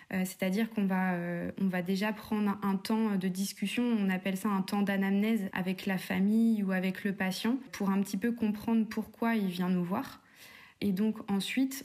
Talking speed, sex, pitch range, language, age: 190 wpm, female, 190-220 Hz, French, 20-39